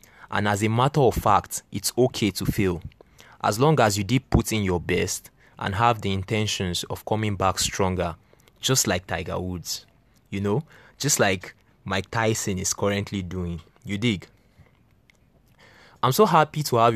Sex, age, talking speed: male, 20-39, 165 wpm